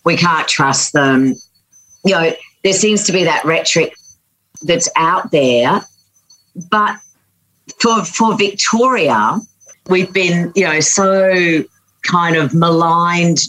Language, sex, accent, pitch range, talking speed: English, female, Australian, 125-160 Hz, 120 wpm